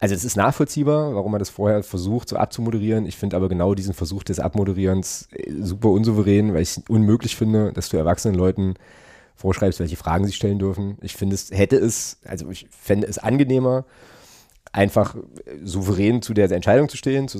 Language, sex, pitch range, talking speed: German, male, 90-105 Hz, 185 wpm